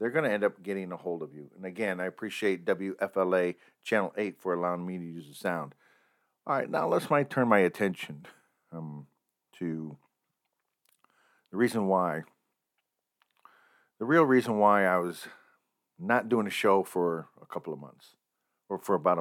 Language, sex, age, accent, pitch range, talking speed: English, male, 50-69, American, 80-95 Hz, 170 wpm